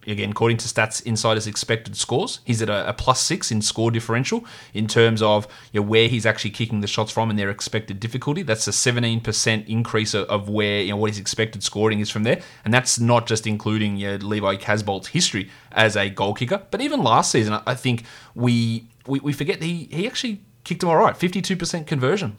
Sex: male